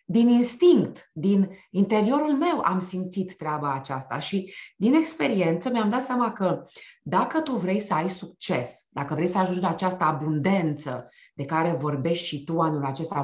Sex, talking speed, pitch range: female, 165 wpm, 150-210 Hz